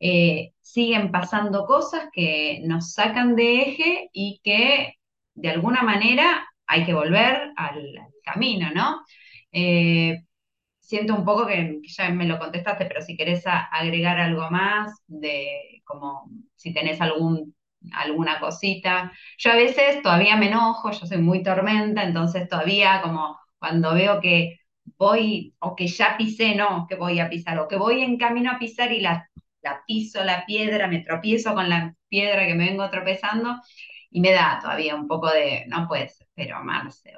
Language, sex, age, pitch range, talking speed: Spanish, female, 20-39, 170-225 Hz, 165 wpm